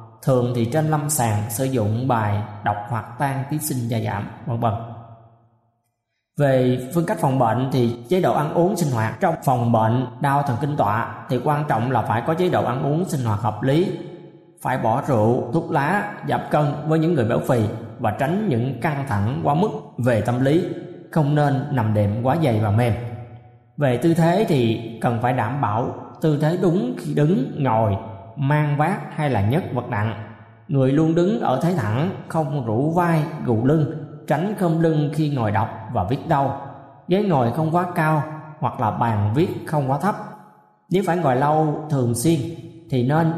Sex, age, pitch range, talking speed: male, 20-39, 115-160 Hz, 195 wpm